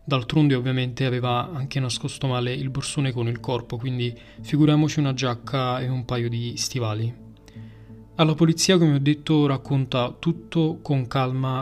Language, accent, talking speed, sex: Italian, native, 150 wpm, male